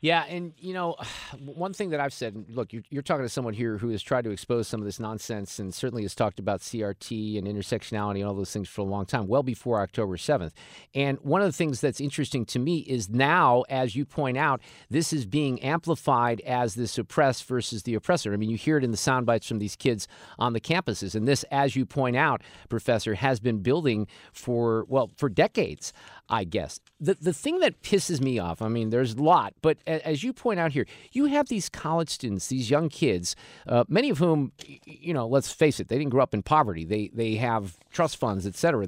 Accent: American